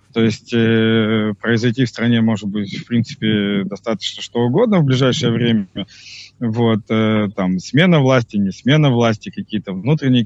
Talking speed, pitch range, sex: 130 wpm, 110-130 Hz, male